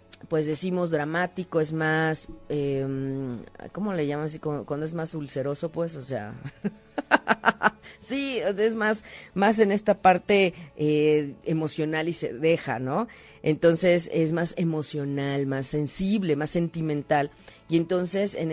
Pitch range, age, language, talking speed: 145-175 Hz, 40-59, Spanish, 130 wpm